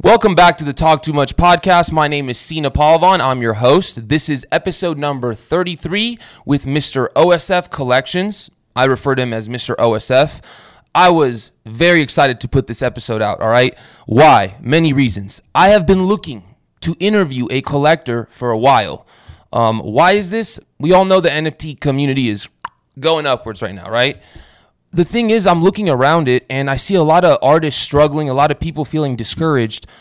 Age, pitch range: 20-39, 125-170 Hz